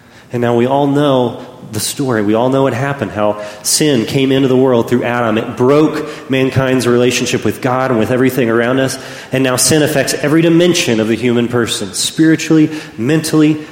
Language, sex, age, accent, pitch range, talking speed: English, male, 30-49, American, 110-140 Hz, 190 wpm